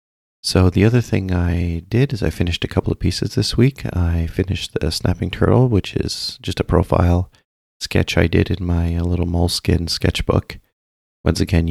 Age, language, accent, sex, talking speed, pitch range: 30-49, English, American, male, 180 wpm, 85-95 Hz